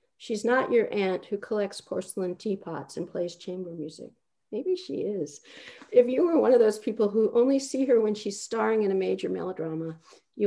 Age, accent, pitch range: 50-69, American, 165-230 Hz